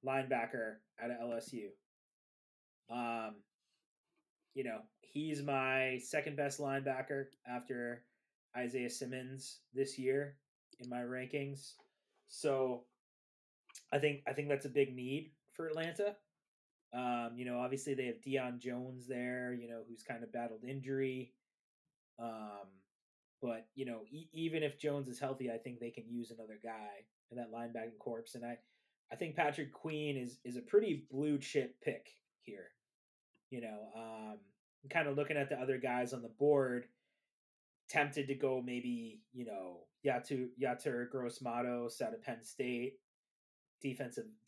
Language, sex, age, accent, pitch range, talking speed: English, male, 20-39, American, 120-140 Hz, 150 wpm